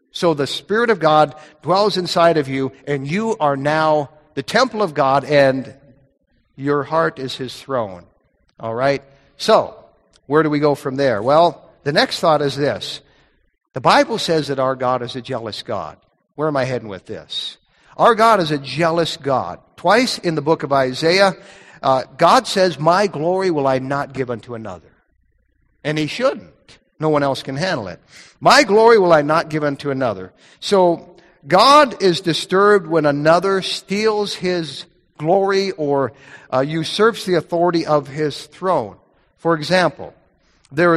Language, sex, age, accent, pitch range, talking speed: English, male, 50-69, American, 140-180 Hz, 165 wpm